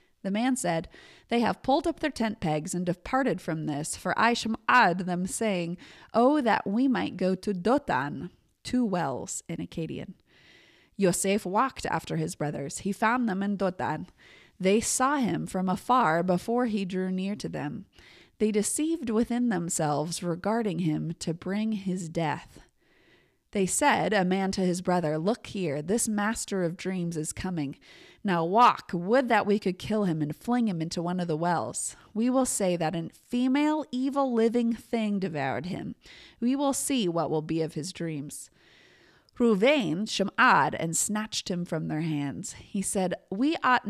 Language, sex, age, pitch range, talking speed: English, female, 20-39, 170-230 Hz, 170 wpm